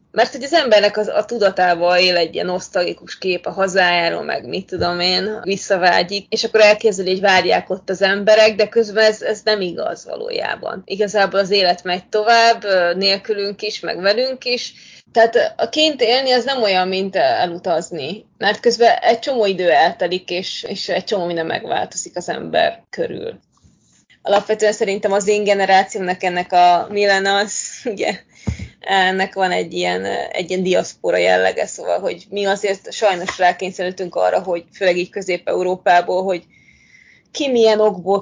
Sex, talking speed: female, 155 wpm